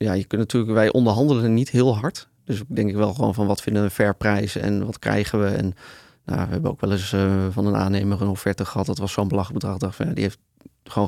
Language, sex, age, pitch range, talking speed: English, male, 30-49, 100-110 Hz, 265 wpm